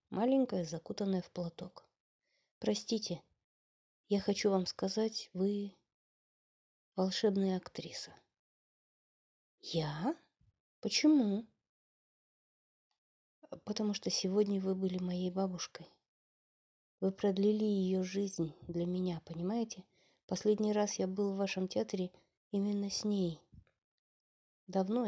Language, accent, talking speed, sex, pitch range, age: Russian, native, 95 wpm, female, 180-220 Hz, 20-39